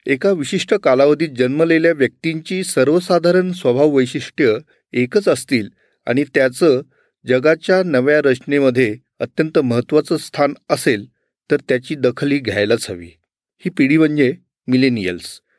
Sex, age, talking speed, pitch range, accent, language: male, 40-59, 110 wpm, 125-155 Hz, native, Marathi